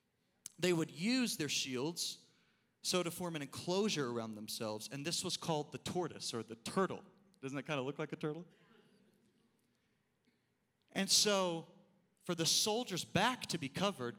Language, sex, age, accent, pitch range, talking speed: English, male, 30-49, American, 140-195 Hz, 160 wpm